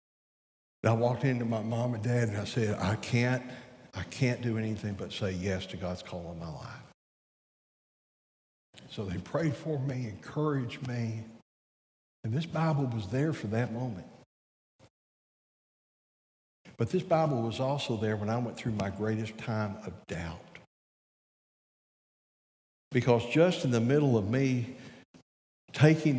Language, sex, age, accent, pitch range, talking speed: English, male, 60-79, American, 110-145 Hz, 145 wpm